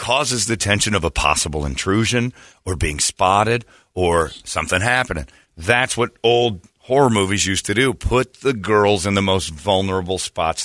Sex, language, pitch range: male, English, 85-110 Hz